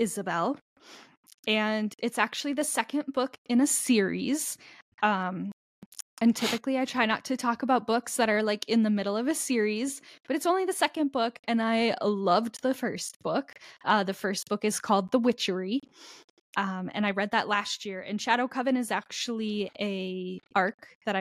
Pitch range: 205-255 Hz